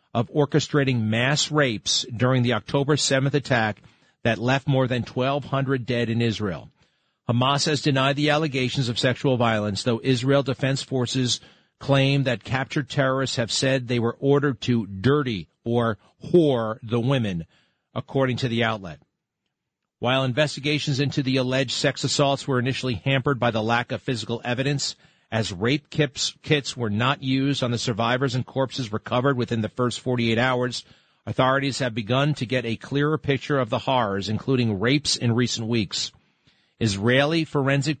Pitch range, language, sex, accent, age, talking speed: 120-140 Hz, English, male, American, 40-59, 155 wpm